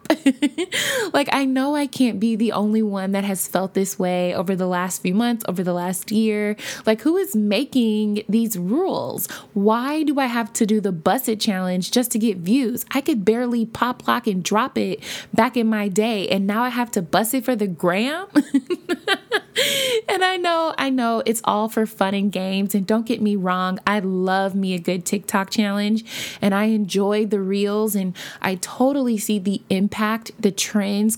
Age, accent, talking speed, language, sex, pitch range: 20-39, American, 195 wpm, English, female, 195-240 Hz